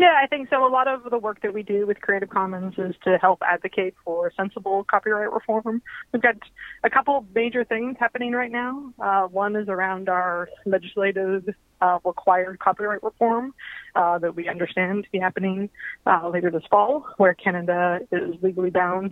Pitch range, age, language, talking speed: 180-225 Hz, 20-39, English, 185 wpm